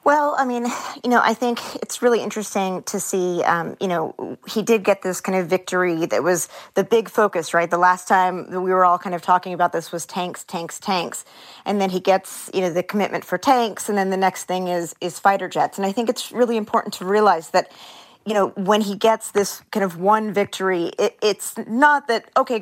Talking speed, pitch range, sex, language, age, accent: 230 wpm, 180-205 Hz, female, English, 30-49, American